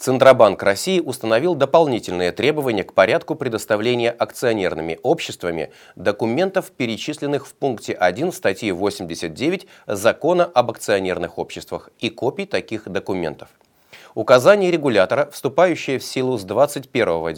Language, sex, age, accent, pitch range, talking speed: Russian, male, 30-49, native, 100-145 Hz, 110 wpm